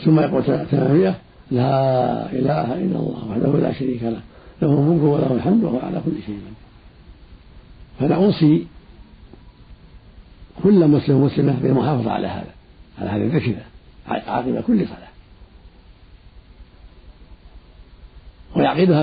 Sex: male